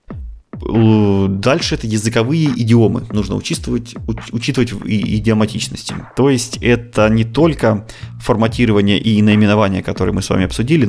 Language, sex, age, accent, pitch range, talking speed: Russian, male, 20-39, native, 100-120 Hz, 115 wpm